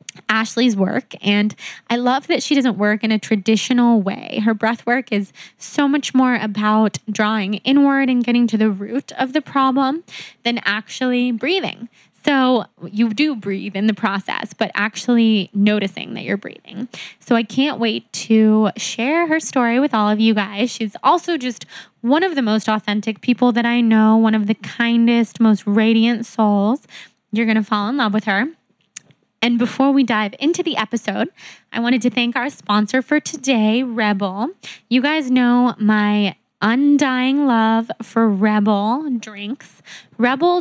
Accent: American